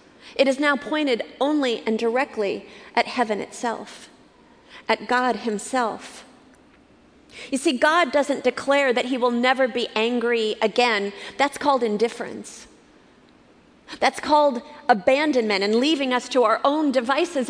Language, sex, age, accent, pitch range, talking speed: English, female, 40-59, American, 235-295 Hz, 130 wpm